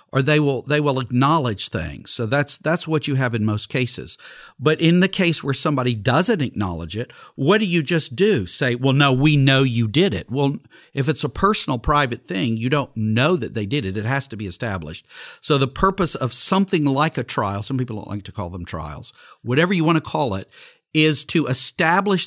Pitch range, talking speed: 120-155 Hz, 220 wpm